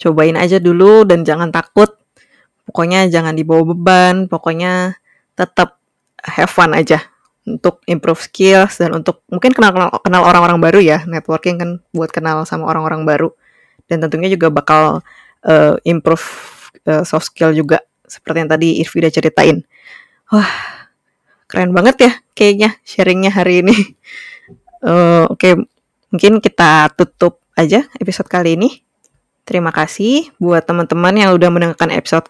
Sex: female